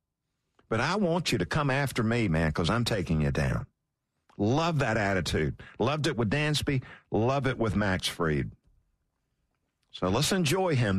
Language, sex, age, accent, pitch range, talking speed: English, male, 50-69, American, 110-170 Hz, 165 wpm